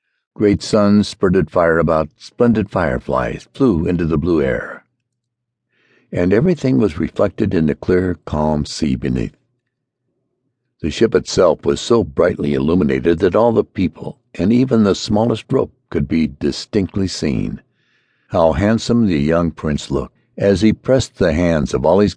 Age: 60-79